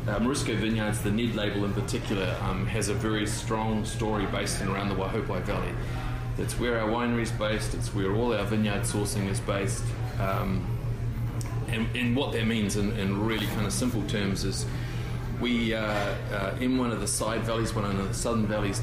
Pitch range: 105-120 Hz